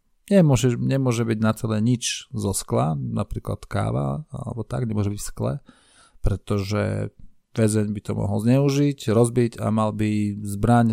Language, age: Slovak, 40-59